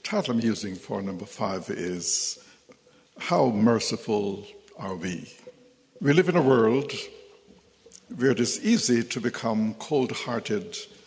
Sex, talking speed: male, 130 wpm